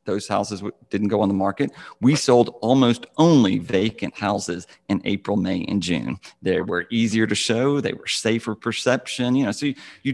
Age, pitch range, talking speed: 40-59, 105-125 Hz, 190 wpm